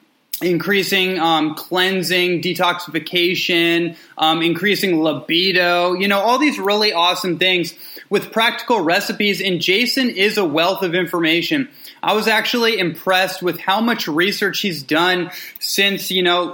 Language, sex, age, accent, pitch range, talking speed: English, male, 20-39, American, 160-190 Hz, 135 wpm